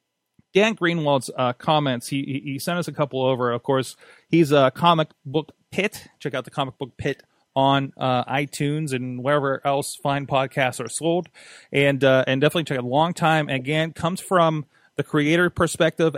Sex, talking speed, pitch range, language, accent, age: male, 180 wpm, 135-160 Hz, English, American, 30-49